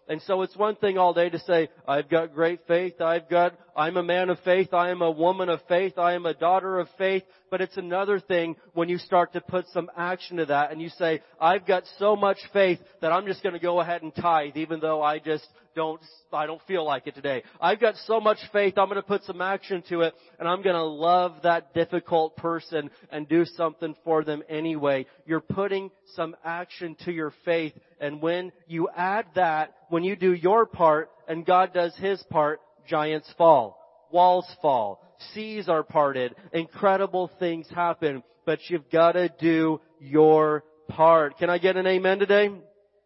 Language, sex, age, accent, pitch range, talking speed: English, male, 30-49, American, 155-185 Hz, 200 wpm